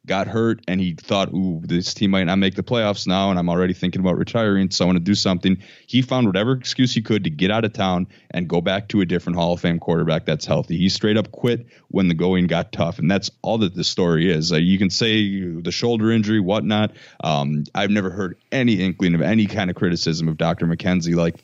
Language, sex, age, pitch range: English, male, 20-39, 85-105 Hz